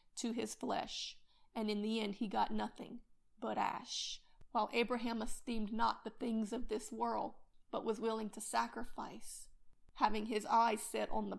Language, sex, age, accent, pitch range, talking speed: English, female, 30-49, American, 220-260 Hz, 170 wpm